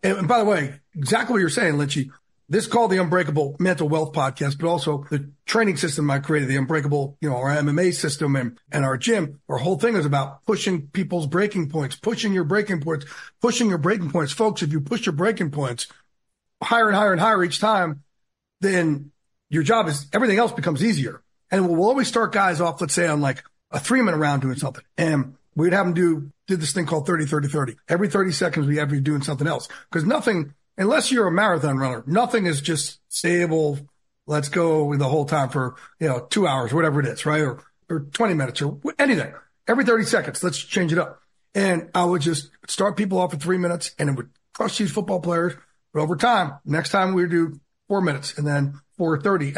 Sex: male